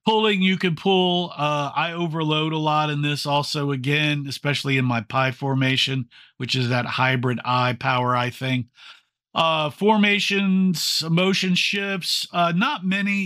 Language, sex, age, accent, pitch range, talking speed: English, male, 40-59, American, 135-180 Hz, 150 wpm